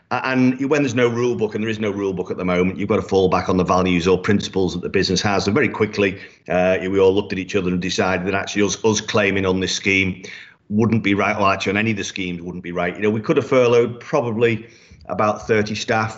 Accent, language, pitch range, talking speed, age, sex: British, English, 95-105 Hz, 265 wpm, 40-59, male